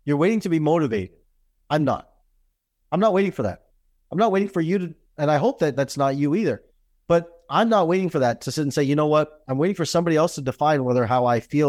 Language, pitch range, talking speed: English, 125-170 Hz, 255 wpm